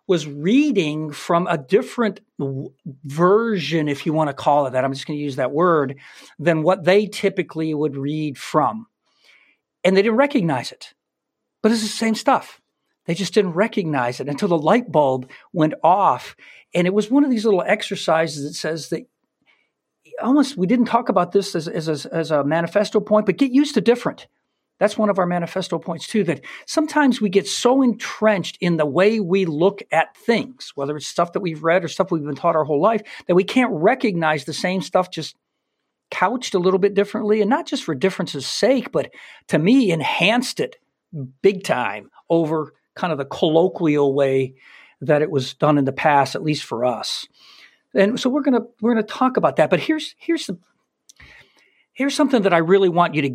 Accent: American